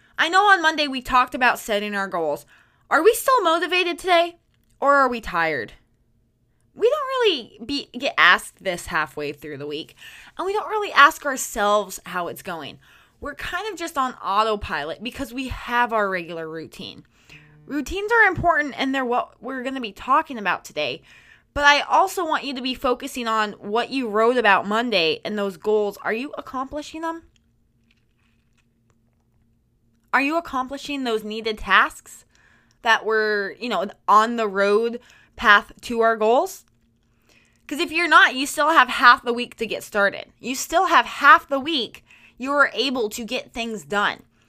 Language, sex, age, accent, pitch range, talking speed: English, female, 20-39, American, 200-295 Hz, 170 wpm